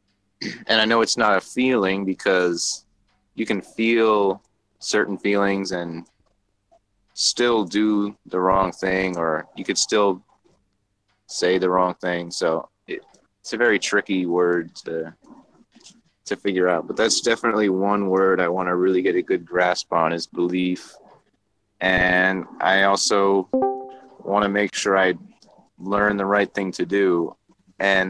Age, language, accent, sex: 30-49, English, American, male